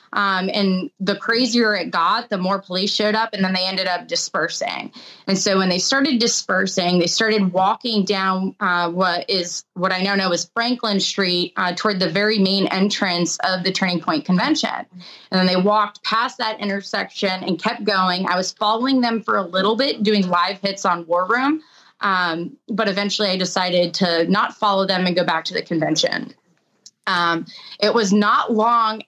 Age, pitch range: 20-39, 185-220 Hz